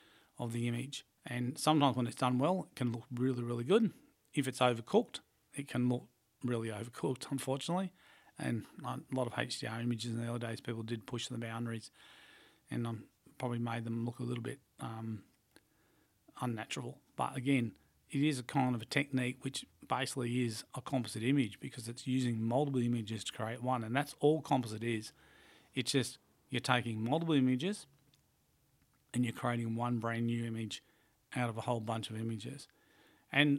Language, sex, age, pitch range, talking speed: English, male, 40-59, 120-135 Hz, 180 wpm